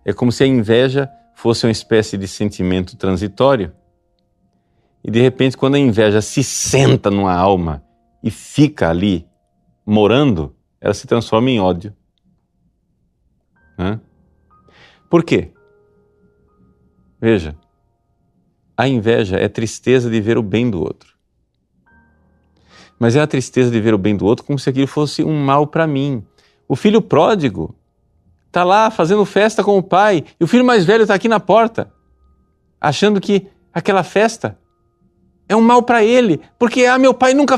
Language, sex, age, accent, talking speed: Portuguese, male, 40-59, Brazilian, 150 wpm